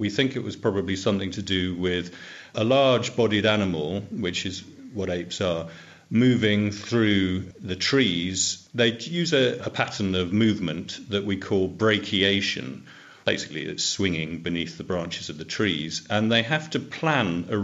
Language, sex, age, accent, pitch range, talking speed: English, male, 40-59, British, 90-125 Hz, 160 wpm